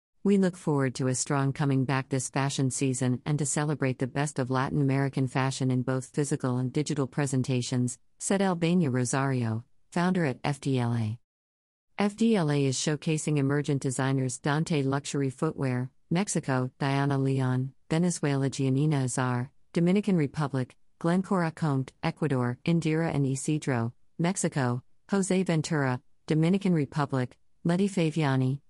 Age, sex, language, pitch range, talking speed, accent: 50-69, female, English, 130-160 Hz, 130 wpm, American